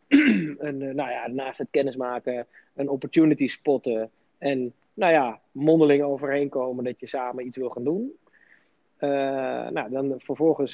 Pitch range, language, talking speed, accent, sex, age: 125-140 Hz, Dutch, 145 wpm, Dutch, male, 20-39